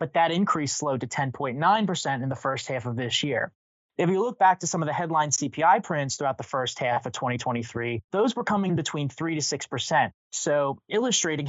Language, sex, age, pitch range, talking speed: English, male, 20-39, 135-165 Hz, 205 wpm